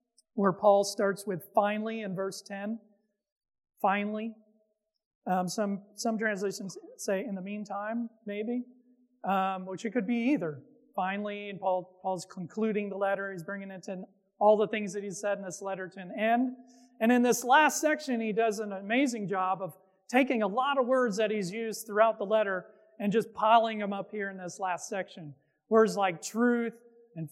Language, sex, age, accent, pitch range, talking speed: English, male, 40-59, American, 195-230 Hz, 180 wpm